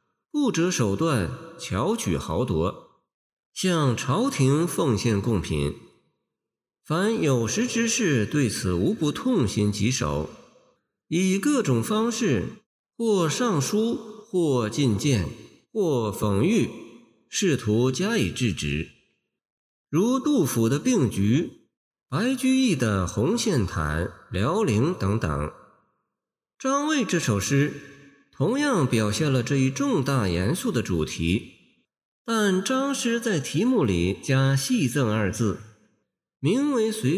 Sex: male